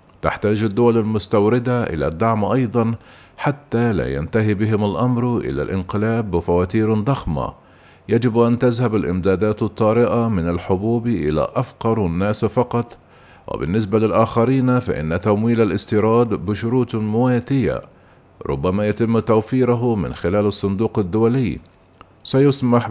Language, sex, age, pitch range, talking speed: Arabic, male, 50-69, 105-120 Hz, 105 wpm